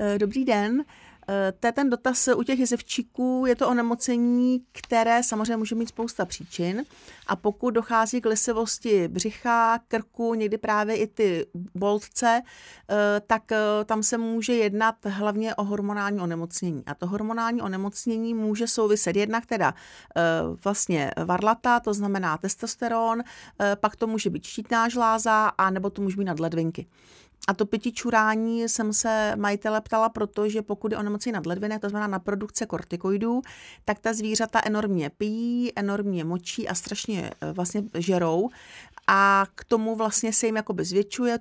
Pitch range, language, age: 200-230 Hz, Czech, 40-59